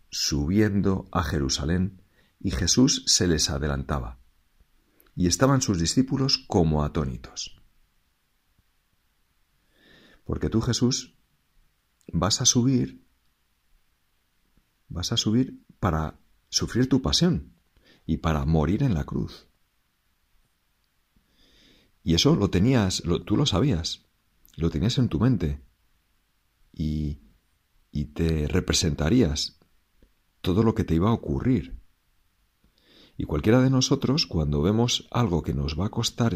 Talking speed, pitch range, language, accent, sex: 110 wpm, 80-110 Hz, Spanish, Spanish, male